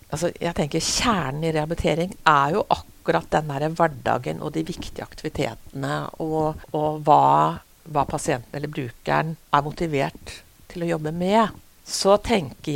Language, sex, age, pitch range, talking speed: English, female, 60-79, 150-190 Hz, 150 wpm